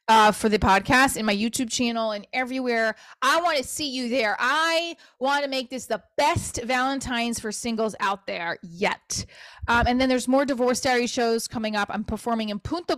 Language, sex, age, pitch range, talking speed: English, female, 20-39, 200-260 Hz, 200 wpm